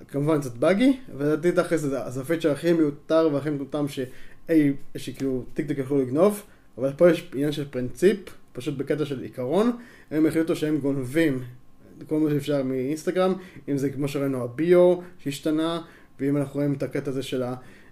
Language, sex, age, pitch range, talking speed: Hebrew, male, 20-39, 140-165 Hz, 150 wpm